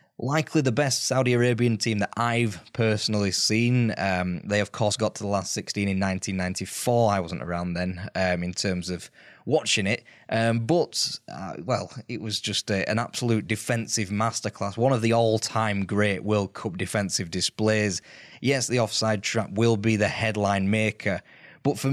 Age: 20-39